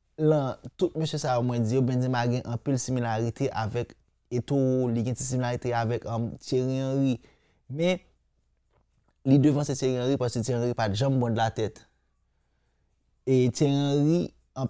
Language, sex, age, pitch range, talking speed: French, male, 30-49, 110-125 Hz, 150 wpm